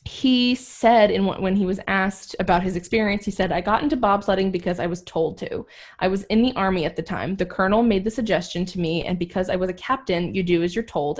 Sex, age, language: female, 20-39, English